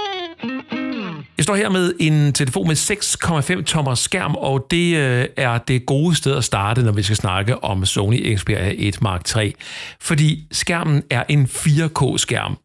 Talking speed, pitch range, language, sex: 160 wpm, 110-150 Hz, Danish, male